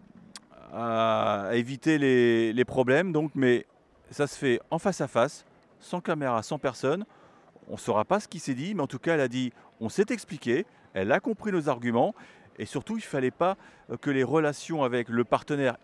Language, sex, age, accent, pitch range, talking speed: French, male, 40-59, French, 120-165 Hz, 195 wpm